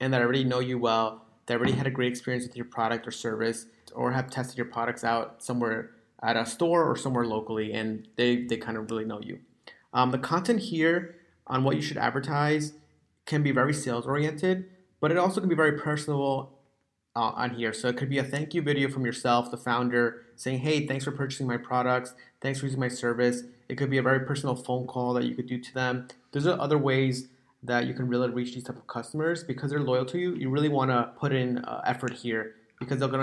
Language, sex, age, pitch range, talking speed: English, male, 30-49, 120-140 Hz, 235 wpm